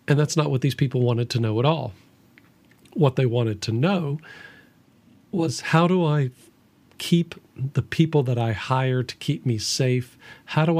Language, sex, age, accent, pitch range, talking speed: English, male, 50-69, American, 125-155 Hz, 180 wpm